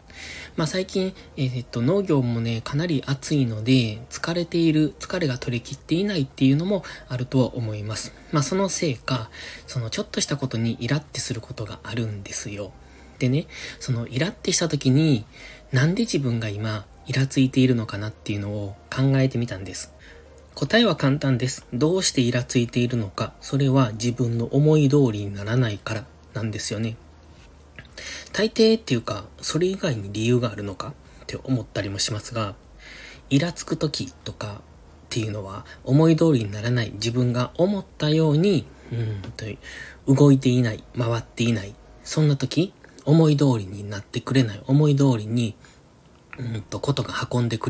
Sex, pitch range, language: male, 110-145 Hz, Japanese